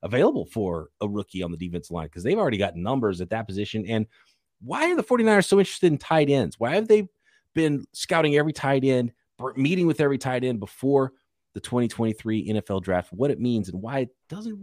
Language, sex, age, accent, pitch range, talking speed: English, male, 30-49, American, 110-180 Hz, 210 wpm